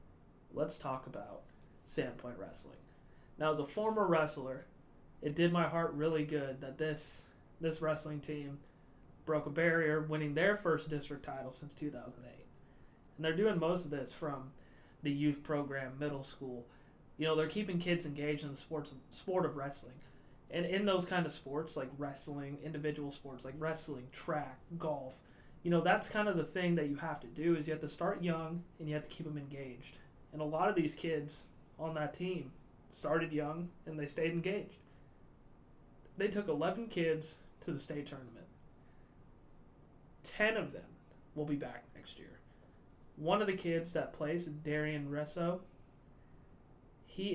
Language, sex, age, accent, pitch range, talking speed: English, male, 30-49, American, 140-165 Hz, 170 wpm